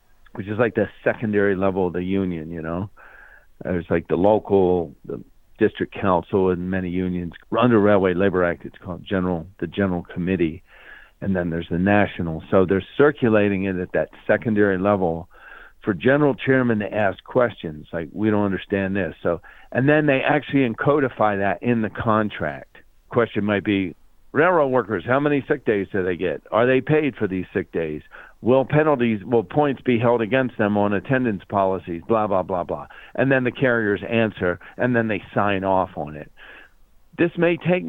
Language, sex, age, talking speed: English, male, 50-69, 180 wpm